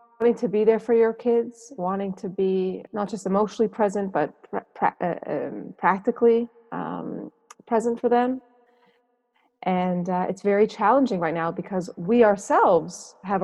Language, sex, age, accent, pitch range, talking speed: English, female, 30-49, American, 180-225 Hz, 145 wpm